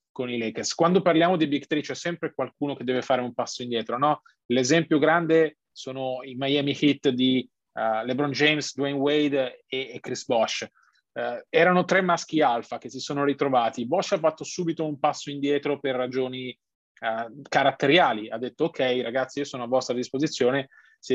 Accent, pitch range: native, 130-160 Hz